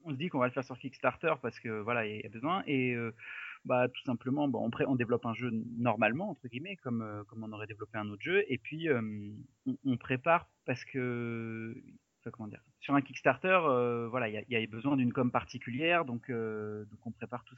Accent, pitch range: French, 115-135 Hz